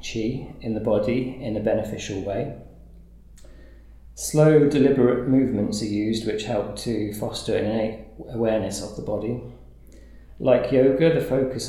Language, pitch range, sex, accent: English, 105-125 Hz, male, British